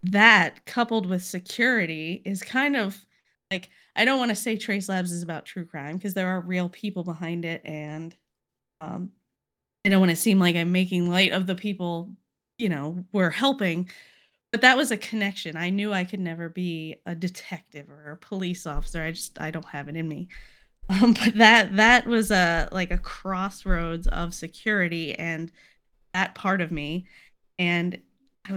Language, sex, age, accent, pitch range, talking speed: English, female, 20-39, American, 175-205 Hz, 185 wpm